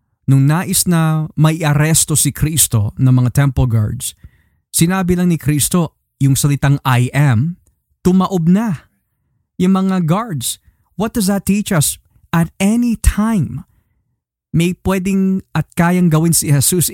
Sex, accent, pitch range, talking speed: male, native, 135-180 Hz, 135 wpm